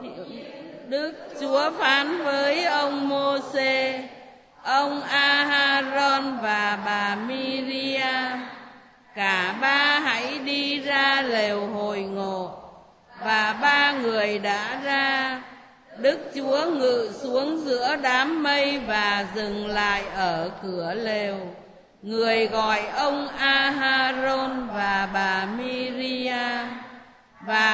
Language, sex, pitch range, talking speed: Vietnamese, female, 230-280 Hz, 95 wpm